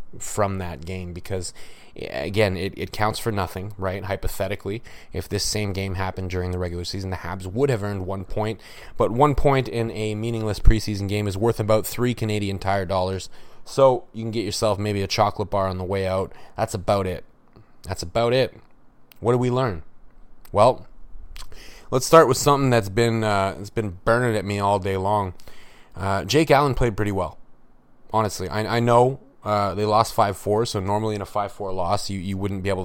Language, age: English, 20-39